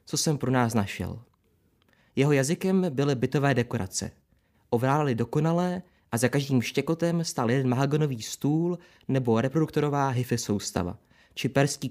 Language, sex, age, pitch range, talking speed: Czech, male, 20-39, 115-150 Hz, 130 wpm